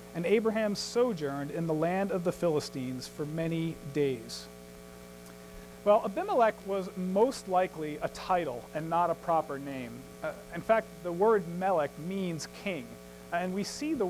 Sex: male